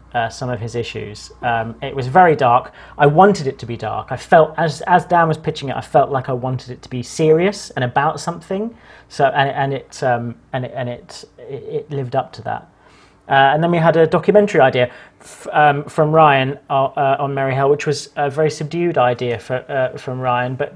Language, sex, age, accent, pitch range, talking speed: English, male, 30-49, British, 120-140 Hz, 225 wpm